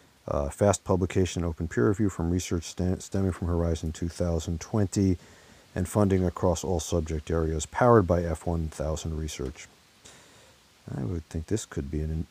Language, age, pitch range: English, 40-59, 80-95 Hz